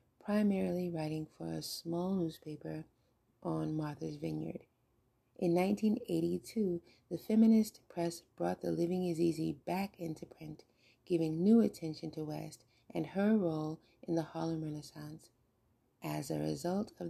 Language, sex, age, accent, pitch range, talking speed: English, female, 30-49, American, 130-180 Hz, 135 wpm